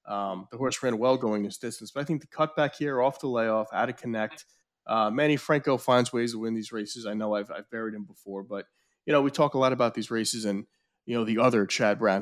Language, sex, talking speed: English, male, 265 wpm